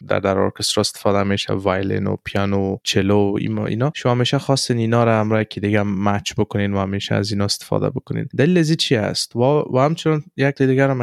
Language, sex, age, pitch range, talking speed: Persian, male, 20-39, 100-125 Hz, 200 wpm